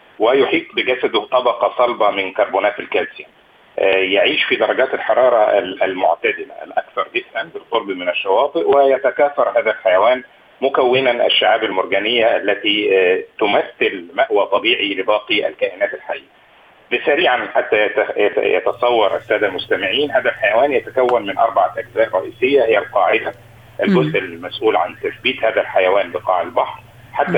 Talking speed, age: 120 wpm, 50-69